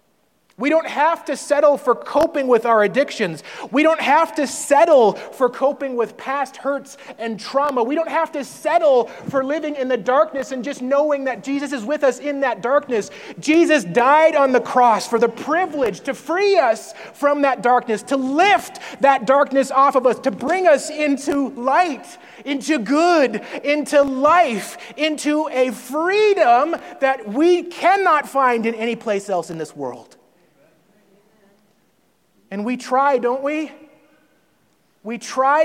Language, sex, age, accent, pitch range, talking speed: English, male, 30-49, American, 225-290 Hz, 160 wpm